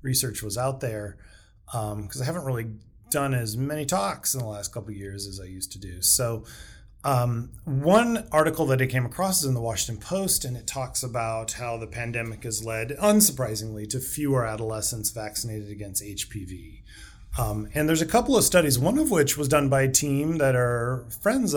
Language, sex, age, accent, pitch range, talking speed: English, male, 30-49, American, 105-130 Hz, 200 wpm